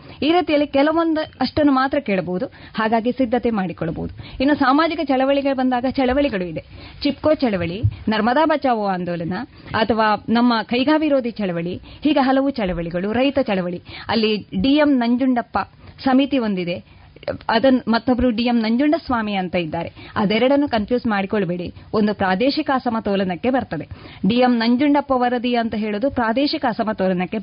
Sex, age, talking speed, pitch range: female, 20-39, 120 wpm, 205-270 Hz